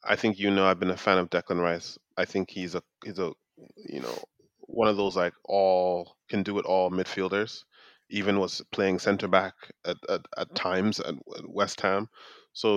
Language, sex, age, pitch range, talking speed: English, male, 20-39, 95-105 Hz, 195 wpm